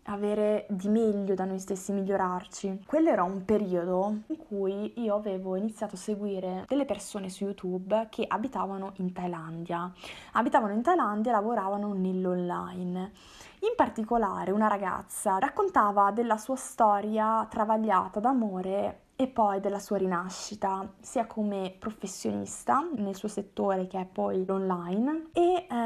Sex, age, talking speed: female, 20-39, 135 wpm